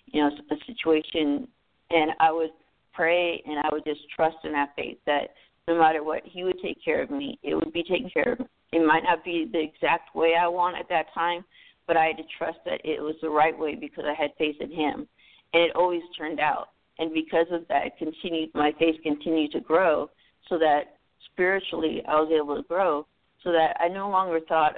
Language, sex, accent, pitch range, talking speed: English, female, American, 150-175 Hz, 220 wpm